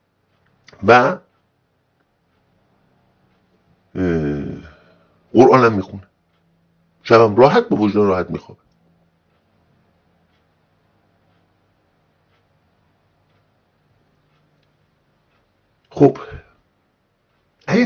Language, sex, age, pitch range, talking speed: Persian, male, 60-79, 80-115 Hz, 35 wpm